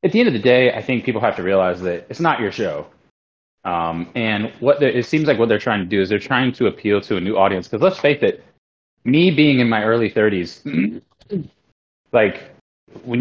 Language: English